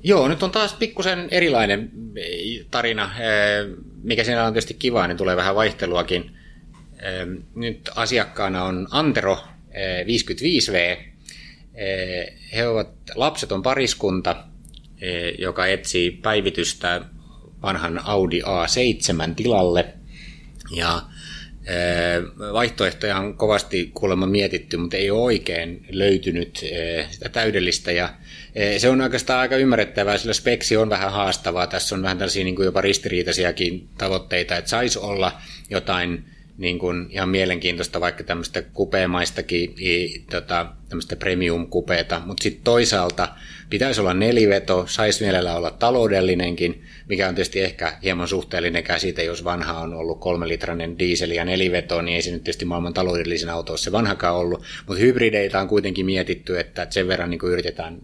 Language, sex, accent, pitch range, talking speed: Finnish, male, native, 85-105 Hz, 130 wpm